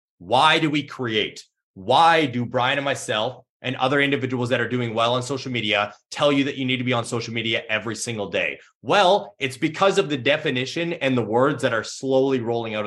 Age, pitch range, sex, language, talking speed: 30-49, 120-165 Hz, male, English, 215 wpm